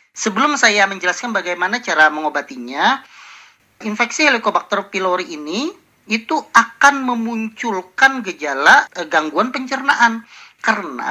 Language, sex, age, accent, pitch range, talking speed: Indonesian, male, 40-59, native, 170-240 Hz, 95 wpm